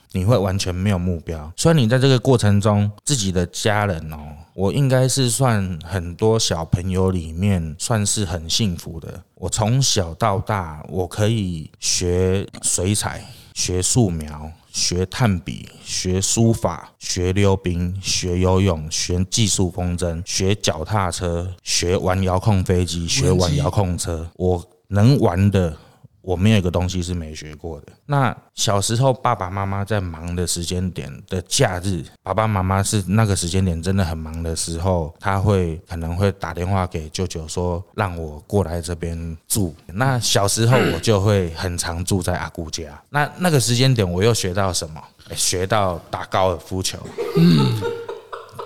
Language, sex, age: Chinese, male, 20-39